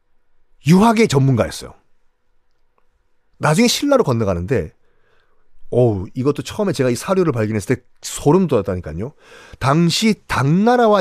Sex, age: male, 30-49